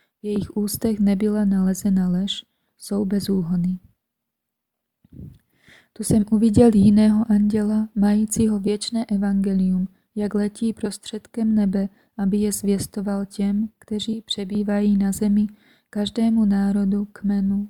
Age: 20-39